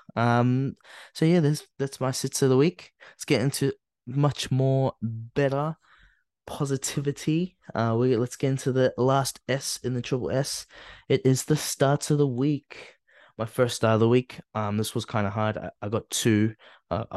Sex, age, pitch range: male, 20-39, 100-125 Hz